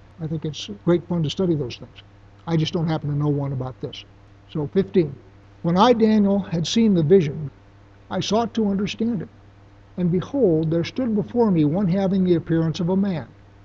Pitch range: 135-185 Hz